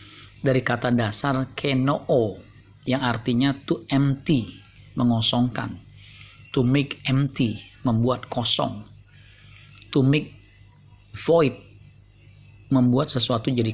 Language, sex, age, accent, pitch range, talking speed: Indonesian, male, 40-59, native, 110-130 Hz, 85 wpm